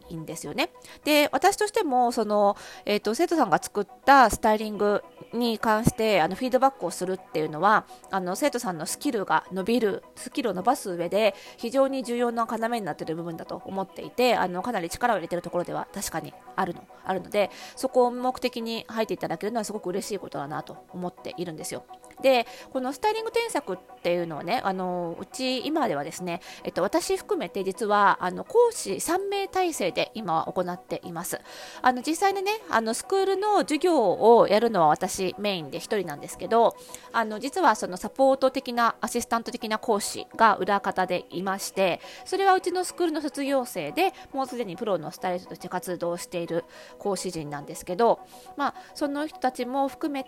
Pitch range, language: 185-260 Hz, Japanese